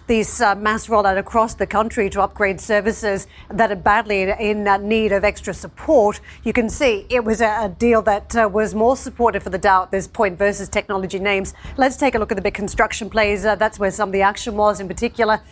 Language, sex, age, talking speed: English, female, 40-59, 215 wpm